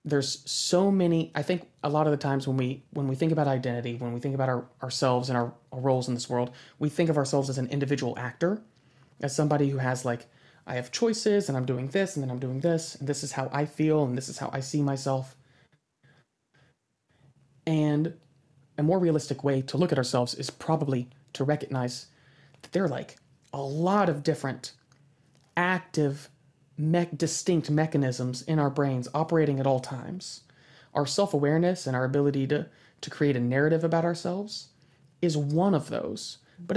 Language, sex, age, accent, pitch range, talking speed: English, male, 30-49, American, 135-160 Hz, 190 wpm